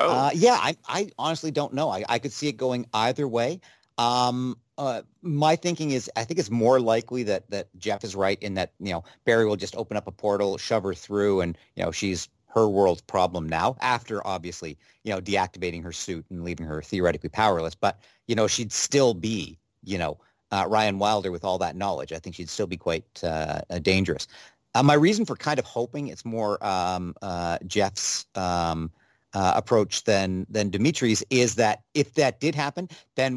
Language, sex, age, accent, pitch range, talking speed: English, male, 50-69, American, 90-120 Hz, 205 wpm